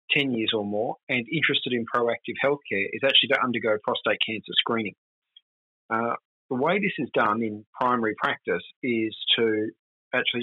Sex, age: male, 40-59